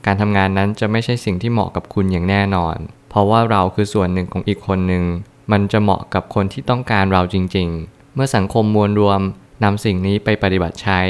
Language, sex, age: Thai, male, 20-39